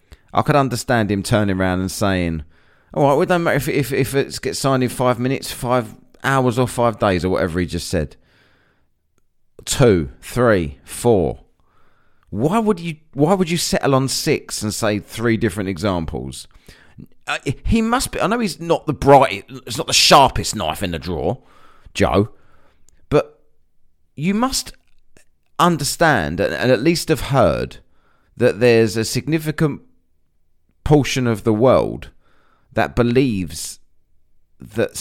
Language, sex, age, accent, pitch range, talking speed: English, male, 30-49, British, 95-140 Hz, 155 wpm